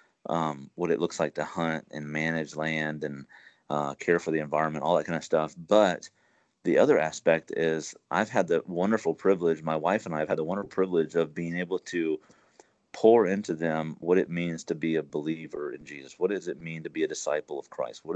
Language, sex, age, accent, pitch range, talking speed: English, male, 30-49, American, 80-100 Hz, 220 wpm